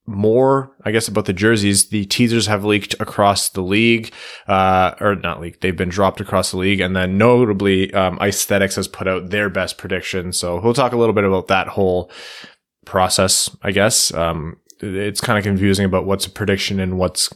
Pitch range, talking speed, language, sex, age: 90-105 Hz, 195 wpm, English, male, 20-39